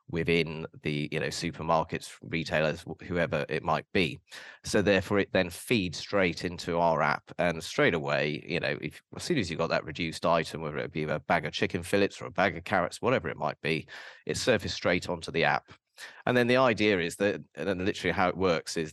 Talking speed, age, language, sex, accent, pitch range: 220 wpm, 30-49, English, male, British, 85-100 Hz